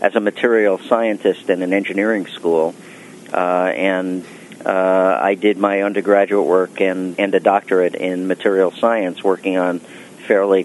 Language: English